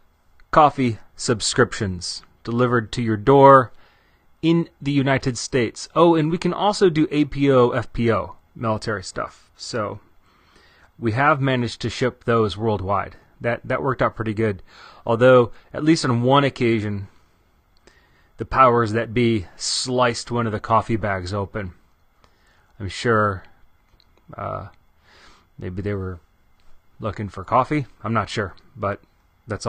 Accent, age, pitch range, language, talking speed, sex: American, 30-49, 100-135 Hz, English, 130 wpm, male